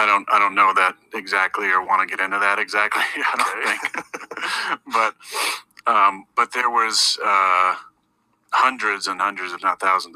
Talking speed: 170 wpm